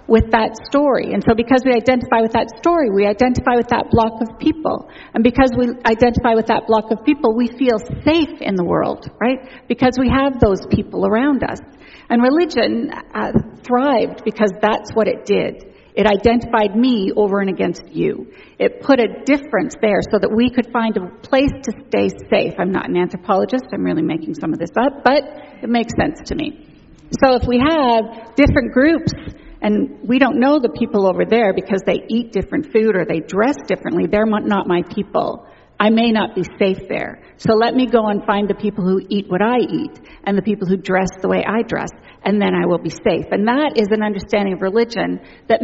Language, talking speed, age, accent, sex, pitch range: English, 210 wpm, 40-59, American, female, 210-260 Hz